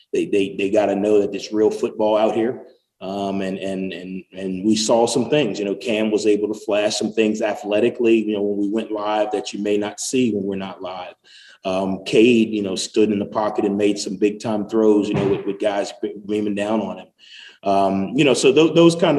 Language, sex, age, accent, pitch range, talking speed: English, male, 30-49, American, 100-130 Hz, 235 wpm